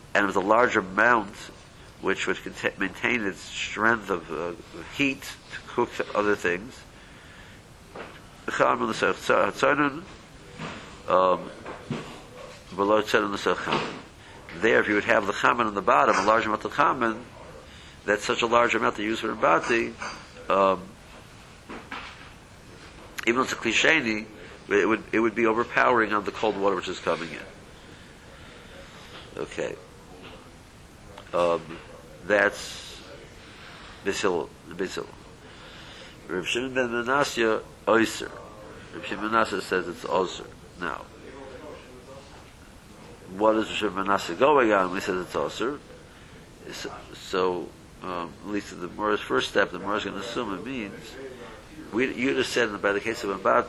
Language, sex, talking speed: English, male, 130 wpm